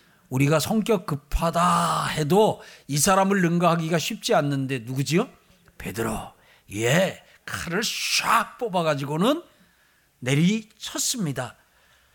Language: Korean